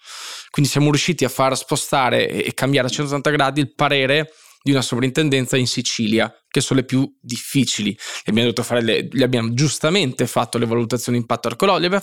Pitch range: 120-150 Hz